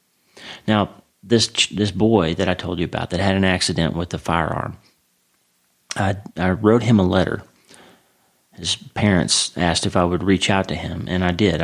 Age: 40-59